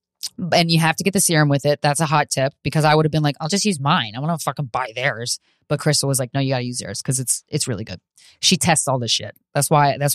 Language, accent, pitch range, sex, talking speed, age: English, American, 145-190 Hz, female, 305 wpm, 20-39